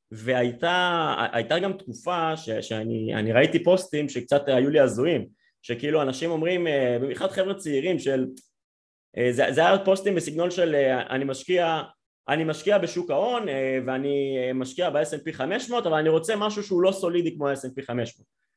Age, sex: 30-49, male